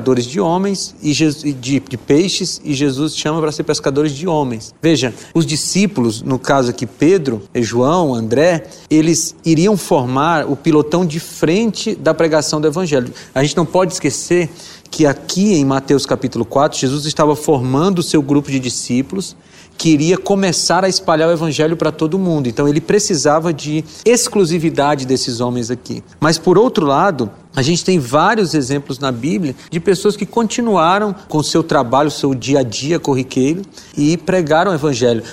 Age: 40-59